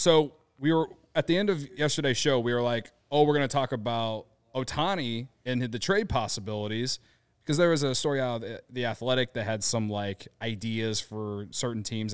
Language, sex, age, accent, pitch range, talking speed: English, male, 30-49, American, 110-140 Hz, 205 wpm